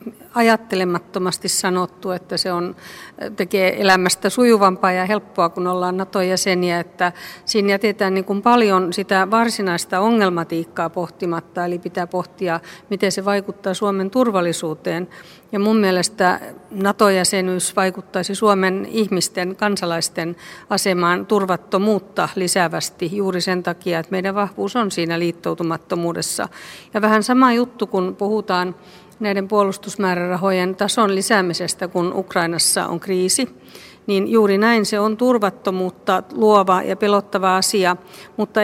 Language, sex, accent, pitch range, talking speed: Finnish, female, native, 180-200 Hz, 120 wpm